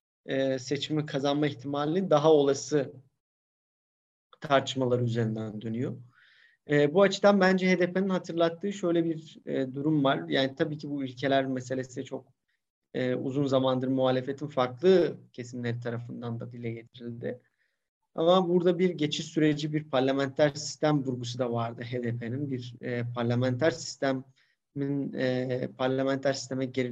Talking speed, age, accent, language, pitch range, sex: 115 wpm, 40-59, native, Turkish, 125-155 Hz, male